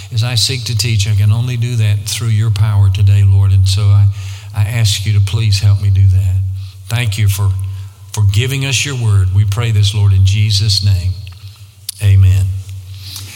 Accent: American